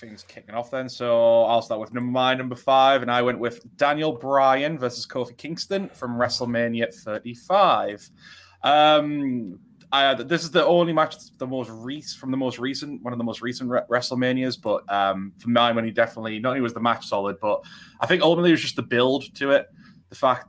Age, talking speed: 20-39, 210 wpm